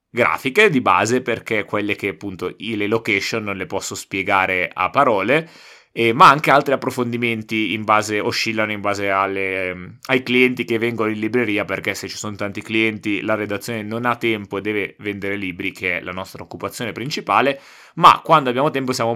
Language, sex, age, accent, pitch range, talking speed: Italian, male, 20-39, native, 100-125 Hz, 185 wpm